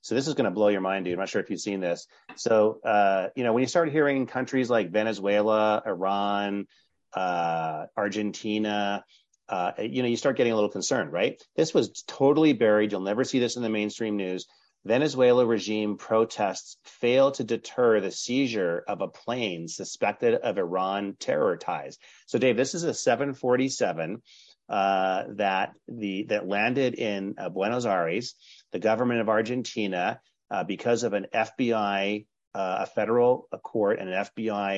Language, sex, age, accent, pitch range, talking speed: English, male, 40-59, American, 100-120 Hz, 175 wpm